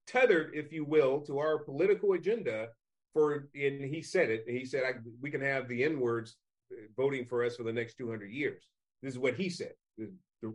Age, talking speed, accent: 40-59, 220 wpm, American